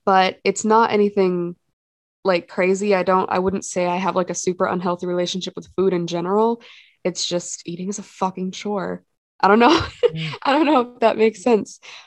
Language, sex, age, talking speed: English, female, 20-39, 195 wpm